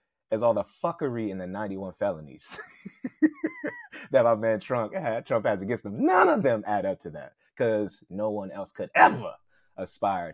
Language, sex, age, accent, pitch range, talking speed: English, male, 30-49, American, 95-120 Hz, 180 wpm